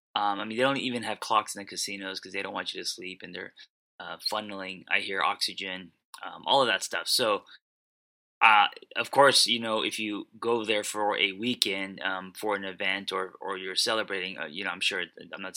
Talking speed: 225 wpm